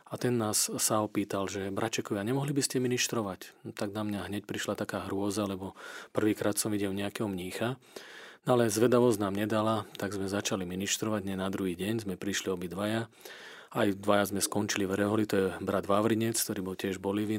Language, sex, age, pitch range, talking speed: Slovak, male, 40-59, 100-110 Hz, 195 wpm